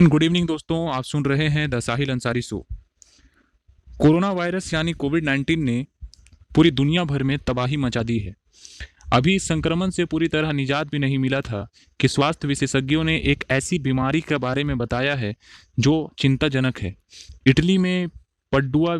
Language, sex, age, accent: Hindi, male, 30-49, native